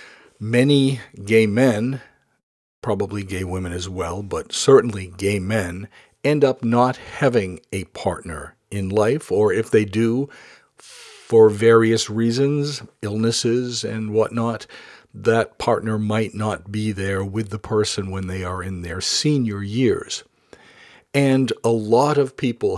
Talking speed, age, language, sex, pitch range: 135 wpm, 50-69, English, male, 100-120 Hz